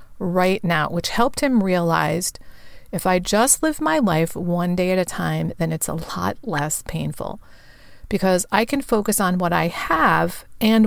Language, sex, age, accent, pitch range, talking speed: English, female, 40-59, American, 175-210 Hz, 175 wpm